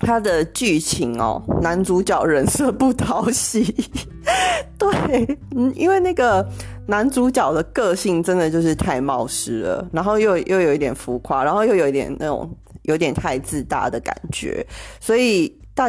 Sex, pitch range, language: female, 150-235 Hz, Chinese